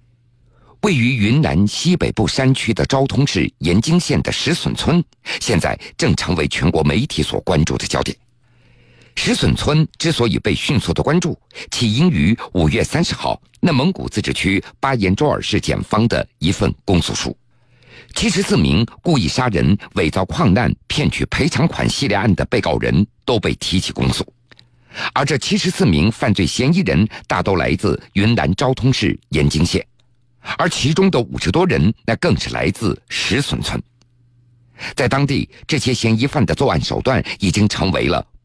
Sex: male